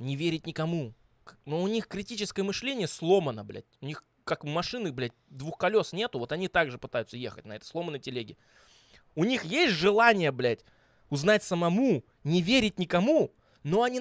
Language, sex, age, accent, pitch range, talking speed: Russian, male, 20-39, native, 130-195 Hz, 170 wpm